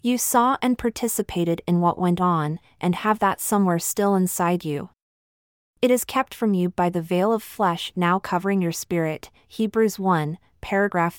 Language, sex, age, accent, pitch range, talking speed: English, female, 30-49, American, 170-225 Hz, 170 wpm